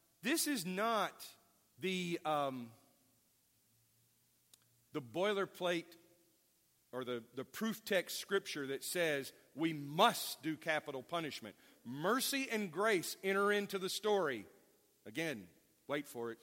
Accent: American